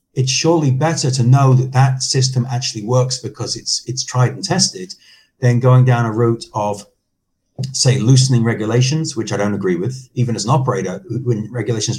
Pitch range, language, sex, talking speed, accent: 115-135 Hz, English, male, 180 wpm, British